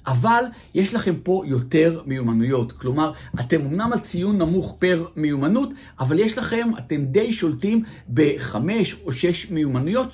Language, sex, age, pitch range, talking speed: Hebrew, male, 50-69, 135-200 Hz, 140 wpm